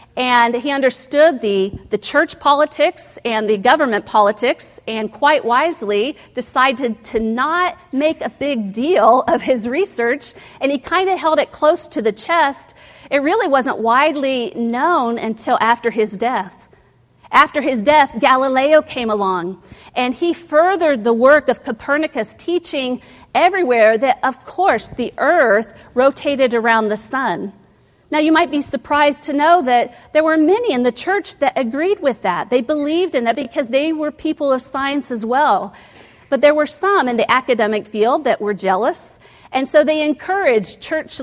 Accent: American